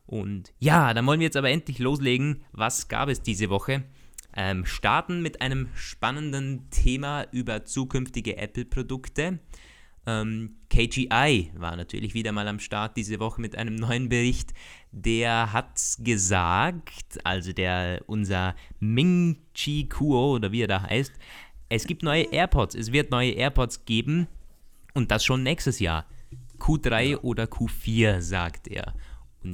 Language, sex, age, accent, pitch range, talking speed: German, male, 20-39, German, 105-140 Hz, 140 wpm